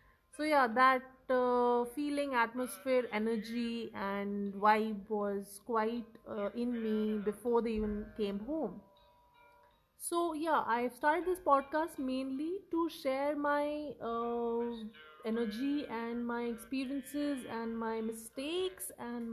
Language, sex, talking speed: English, female, 120 wpm